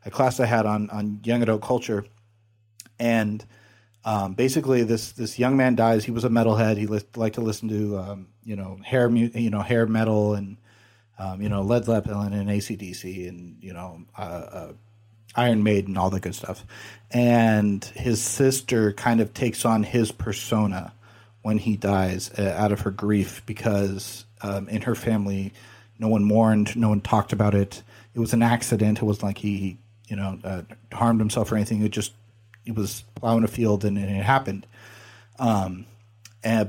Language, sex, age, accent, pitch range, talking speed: English, male, 40-59, American, 105-115 Hz, 190 wpm